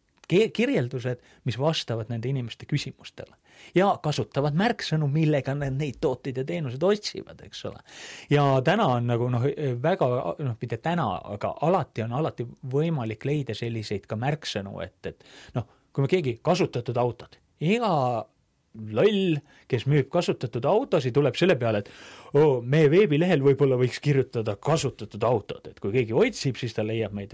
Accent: Finnish